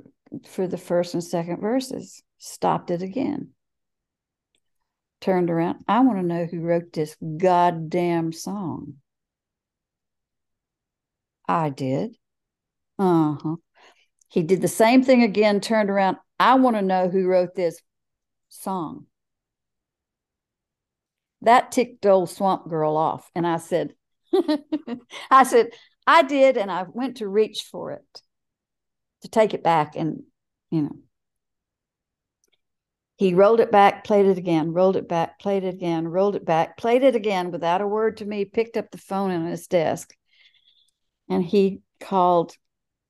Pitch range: 165-210 Hz